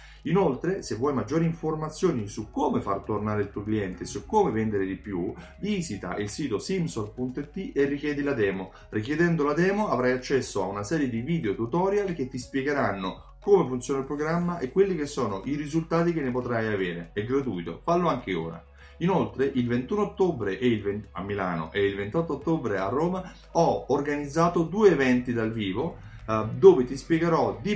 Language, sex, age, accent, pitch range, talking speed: Italian, male, 30-49, native, 110-165 Hz, 175 wpm